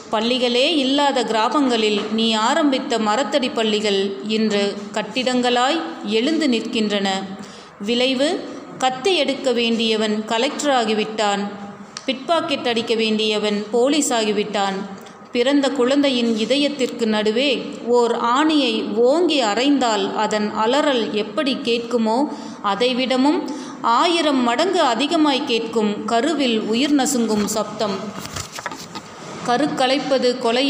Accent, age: native, 30-49